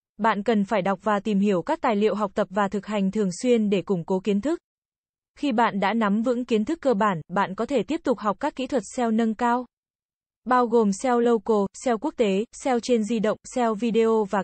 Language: Vietnamese